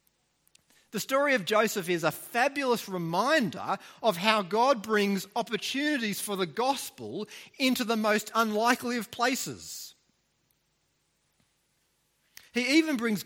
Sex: male